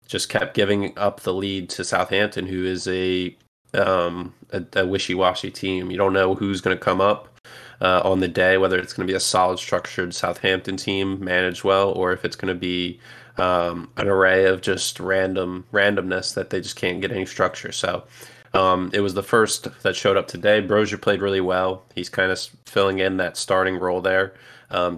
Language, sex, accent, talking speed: English, male, American, 200 wpm